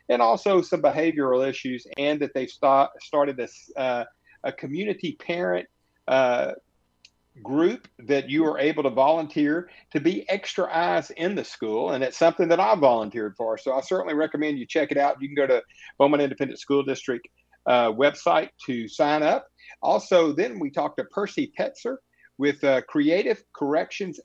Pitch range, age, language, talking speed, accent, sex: 135-175 Hz, 50-69, English, 165 wpm, American, male